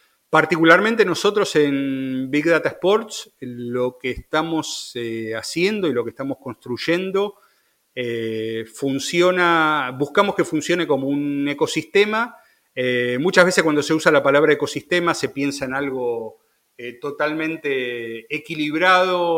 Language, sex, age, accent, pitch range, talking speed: Spanish, male, 40-59, Argentinian, 130-165 Hz, 125 wpm